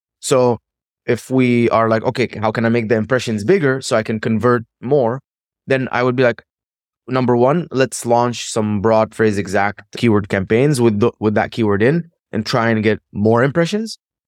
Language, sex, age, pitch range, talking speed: English, male, 20-39, 110-130 Hz, 190 wpm